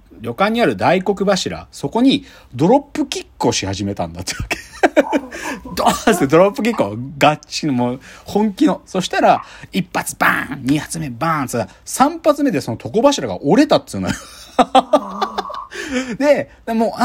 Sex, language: male, Japanese